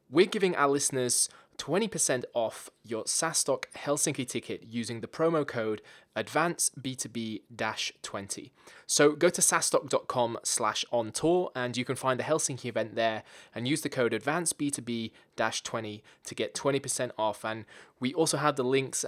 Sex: male